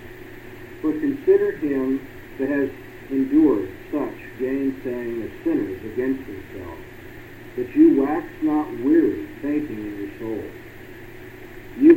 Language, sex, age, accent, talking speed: English, male, 50-69, American, 110 wpm